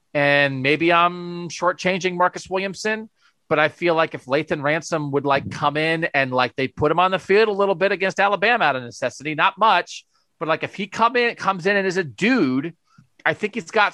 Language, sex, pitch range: English, male, 150-205 Hz